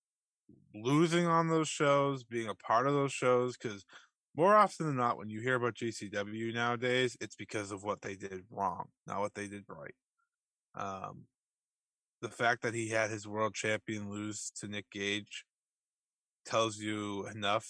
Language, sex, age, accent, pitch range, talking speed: English, male, 20-39, American, 105-135 Hz, 165 wpm